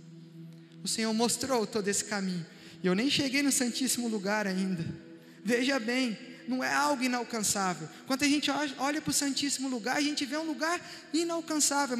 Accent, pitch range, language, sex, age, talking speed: Brazilian, 215-300 Hz, Portuguese, male, 20-39, 170 wpm